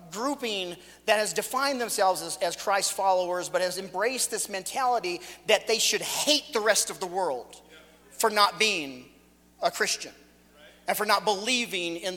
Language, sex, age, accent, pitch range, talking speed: English, male, 40-59, American, 185-280 Hz, 165 wpm